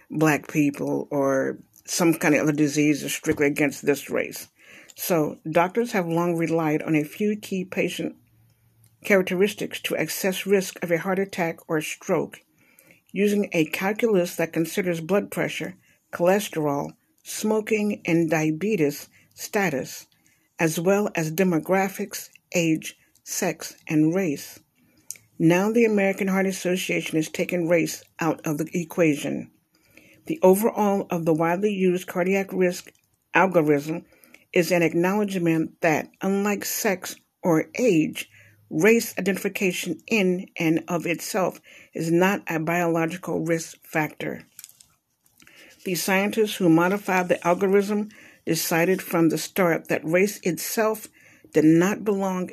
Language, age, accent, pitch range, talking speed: English, 60-79, American, 160-195 Hz, 125 wpm